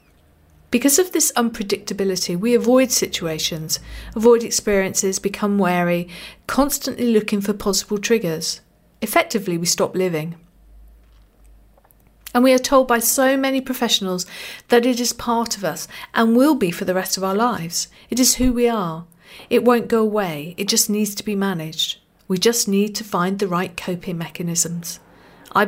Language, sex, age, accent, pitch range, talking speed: English, female, 50-69, British, 180-230 Hz, 160 wpm